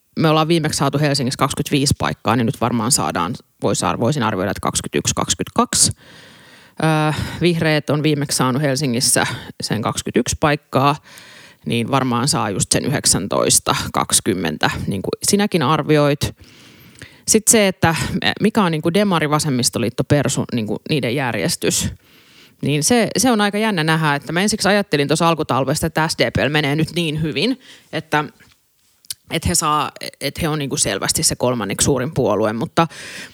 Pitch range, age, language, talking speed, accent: 135-170 Hz, 30-49, Finnish, 135 wpm, native